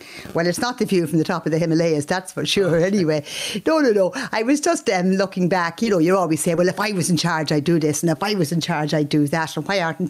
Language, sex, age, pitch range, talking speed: English, female, 50-69, 160-200 Hz, 295 wpm